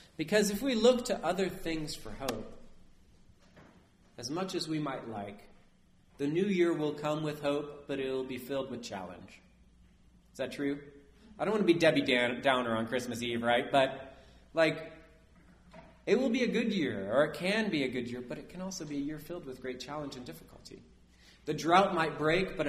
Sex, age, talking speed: male, 30-49, 200 wpm